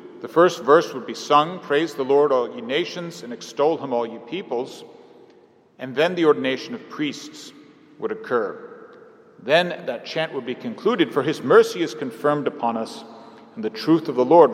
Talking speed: 185 wpm